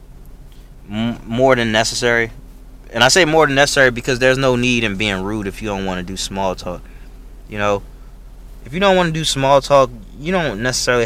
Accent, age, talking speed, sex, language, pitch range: American, 20-39, 200 wpm, male, English, 100-135 Hz